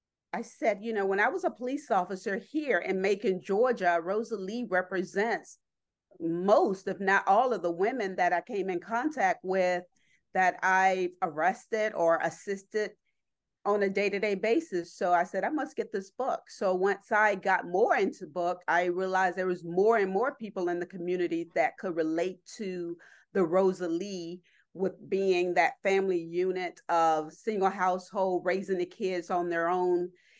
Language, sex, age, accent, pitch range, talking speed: English, female, 40-59, American, 180-215 Hz, 165 wpm